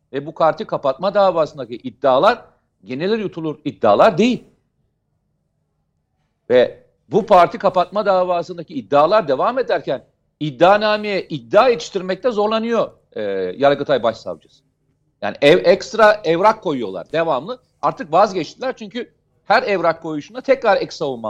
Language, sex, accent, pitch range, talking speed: Turkish, male, native, 145-205 Hz, 115 wpm